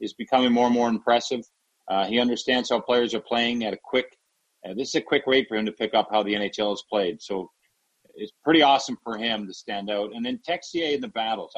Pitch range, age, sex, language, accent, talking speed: 110-140 Hz, 40-59, male, English, American, 245 wpm